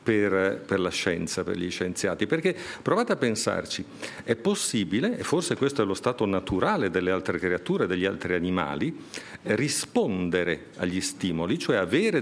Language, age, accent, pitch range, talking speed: Italian, 50-69, native, 95-120 Hz, 150 wpm